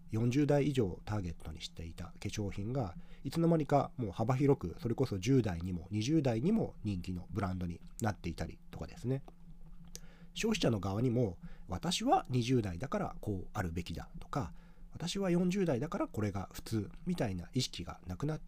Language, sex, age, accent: Japanese, male, 40-59, native